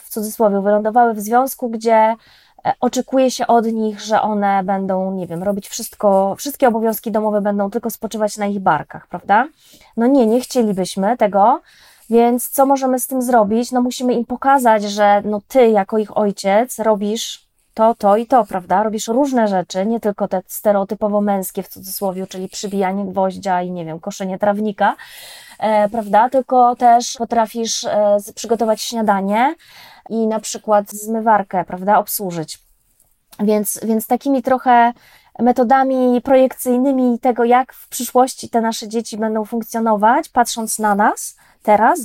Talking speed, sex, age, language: 145 wpm, female, 20-39, Polish